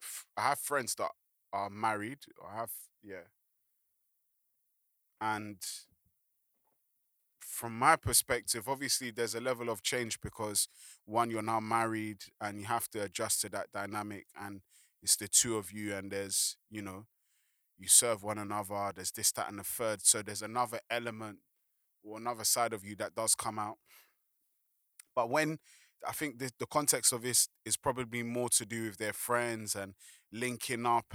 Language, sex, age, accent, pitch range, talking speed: English, male, 20-39, British, 105-120 Hz, 160 wpm